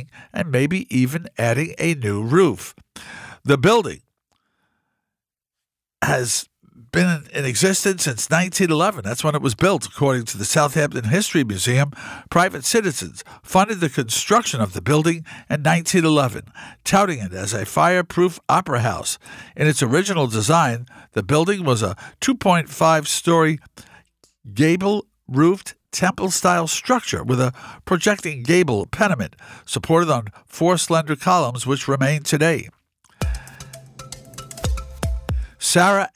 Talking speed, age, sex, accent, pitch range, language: 115 wpm, 50-69, male, American, 125-175 Hz, English